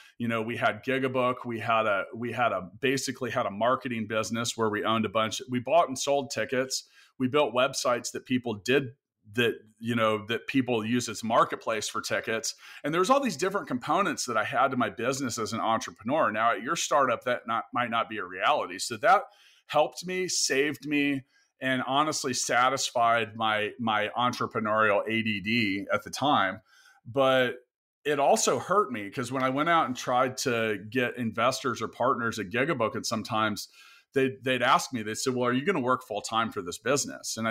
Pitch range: 110-130 Hz